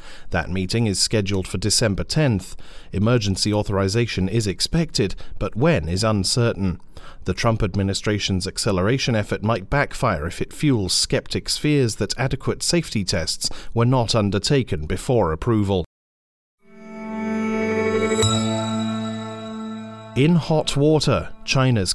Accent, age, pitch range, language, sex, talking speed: British, 40-59, 95-130 Hz, English, male, 110 wpm